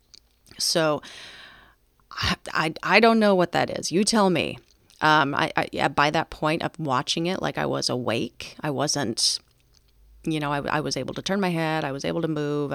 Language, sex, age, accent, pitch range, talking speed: English, female, 30-49, American, 145-195 Hz, 200 wpm